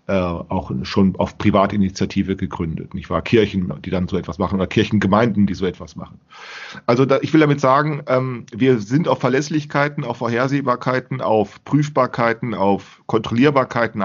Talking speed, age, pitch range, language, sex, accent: 155 wpm, 40-59, 95-130 Hz, German, male, German